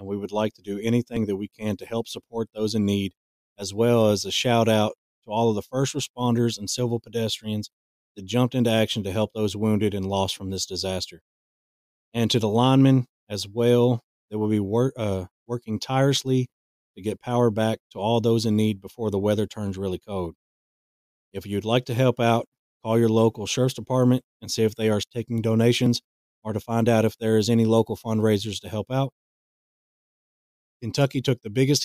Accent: American